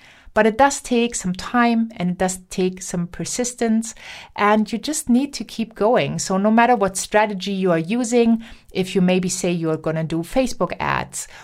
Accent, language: German, English